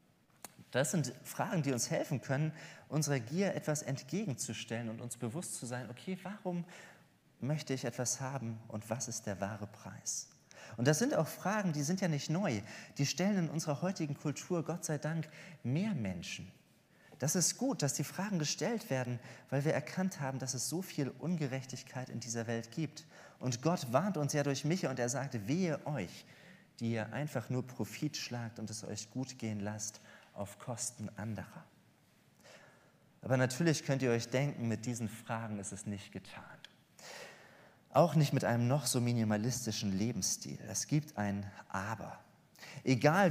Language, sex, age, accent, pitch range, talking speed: German, male, 30-49, German, 115-155 Hz, 170 wpm